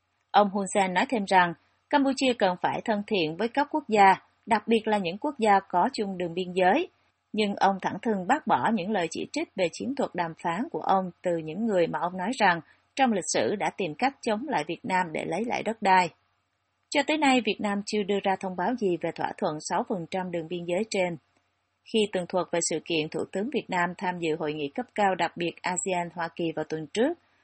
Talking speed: 235 wpm